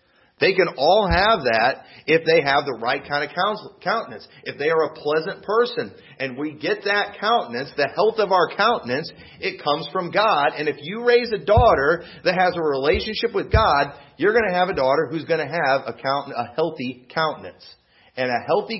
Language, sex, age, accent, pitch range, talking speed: English, male, 40-59, American, 140-195 Hz, 205 wpm